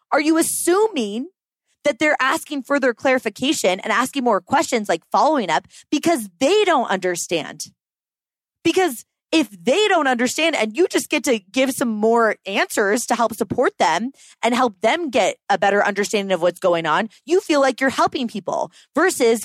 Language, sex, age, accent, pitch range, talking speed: English, female, 20-39, American, 230-330 Hz, 170 wpm